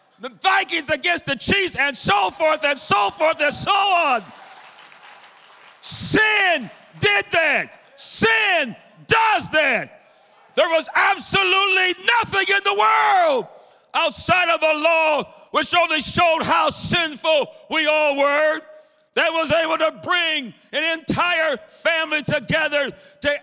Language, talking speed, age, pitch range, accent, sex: English, 125 wpm, 60-79, 275-335 Hz, American, male